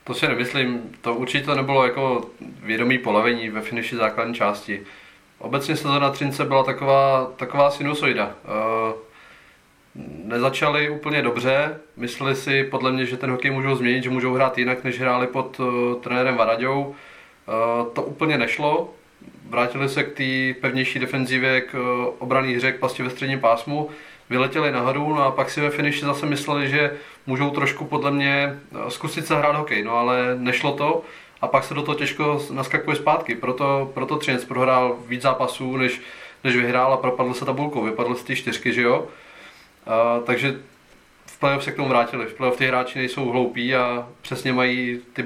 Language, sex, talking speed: Czech, male, 160 wpm